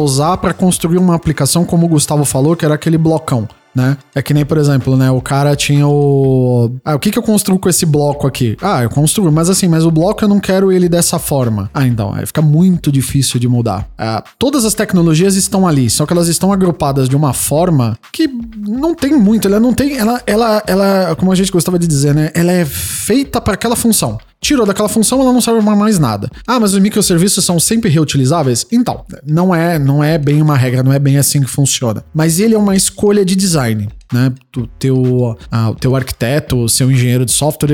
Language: Portuguese